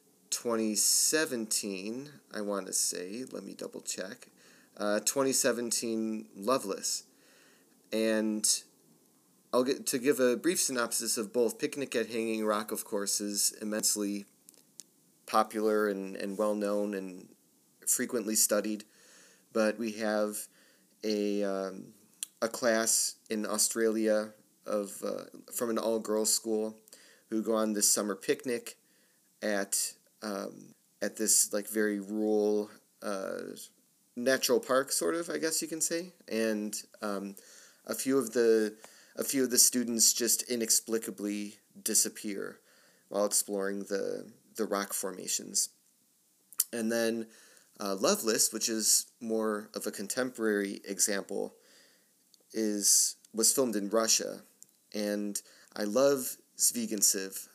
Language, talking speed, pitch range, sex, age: English, 120 wpm, 105-115 Hz, male, 30-49